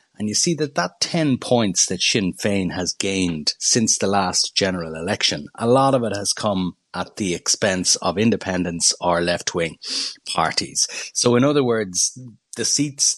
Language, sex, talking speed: English, male, 170 wpm